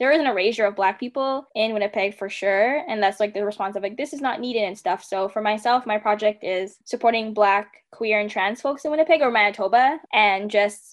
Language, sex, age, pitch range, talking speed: English, female, 10-29, 200-240 Hz, 230 wpm